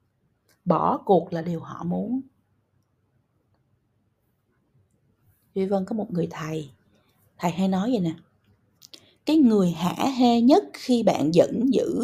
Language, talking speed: Vietnamese, 125 wpm